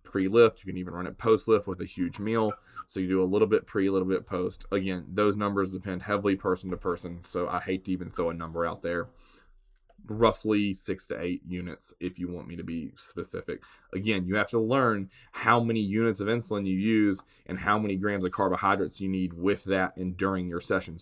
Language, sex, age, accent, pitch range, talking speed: English, male, 20-39, American, 95-115 Hz, 225 wpm